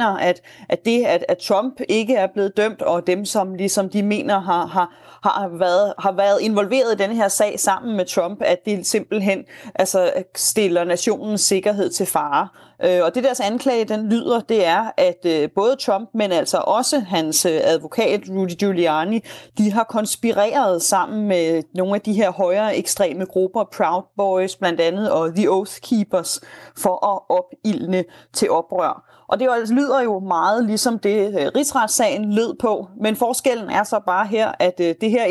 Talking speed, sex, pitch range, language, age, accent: 175 wpm, female, 185-230 Hz, Danish, 30-49, native